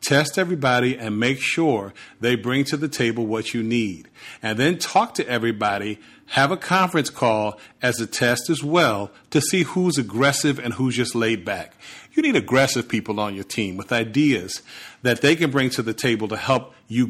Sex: male